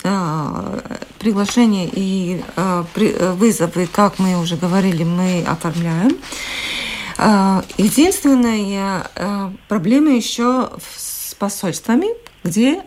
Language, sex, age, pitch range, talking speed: Russian, female, 50-69, 185-240 Hz, 70 wpm